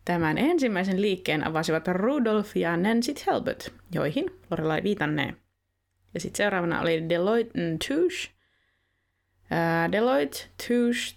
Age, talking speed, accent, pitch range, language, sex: 20-39, 115 wpm, native, 165-210 Hz, Finnish, female